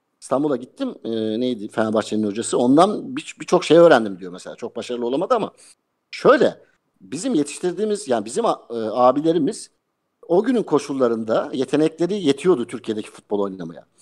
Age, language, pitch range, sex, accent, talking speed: 50-69, Turkish, 115-155 Hz, male, native, 135 wpm